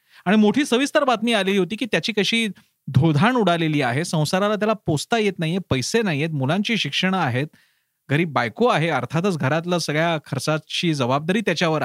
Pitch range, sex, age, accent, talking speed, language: 140-200 Hz, male, 30-49, native, 140 wpm, Marathi